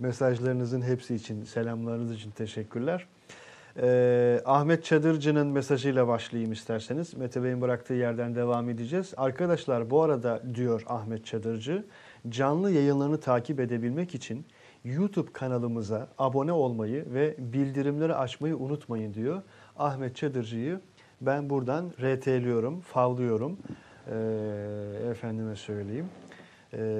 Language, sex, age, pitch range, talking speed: Turkish, male, 40-59, 120-150 Hz, 105 wpm